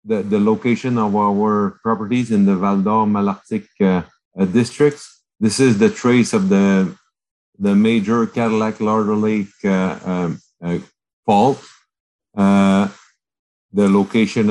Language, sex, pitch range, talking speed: English, male, 100-115 Hz, 125 wpm